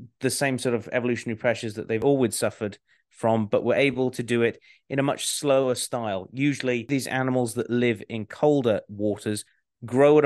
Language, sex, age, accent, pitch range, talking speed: English, male, 30-49, British, 110-130 Hz, 185 wpm